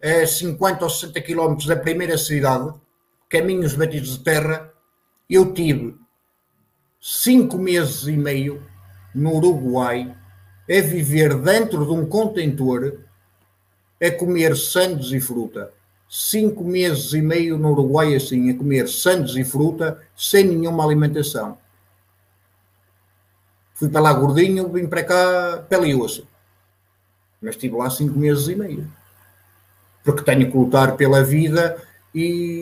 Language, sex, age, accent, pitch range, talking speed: Portuguese, male, 50-69, Portuguese, 130-195 Hz, 125 wpm